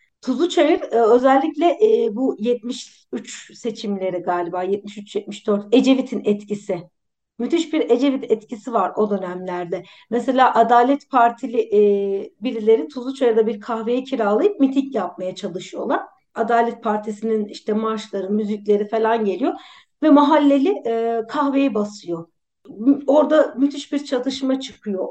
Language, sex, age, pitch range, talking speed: Turkish, female, 50-69, 210-260 Hz, 115 wpm